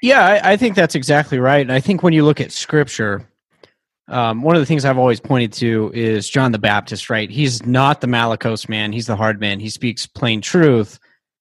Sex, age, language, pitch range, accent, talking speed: male, 30-49, English, 115-160 Hz, American, 220 wpm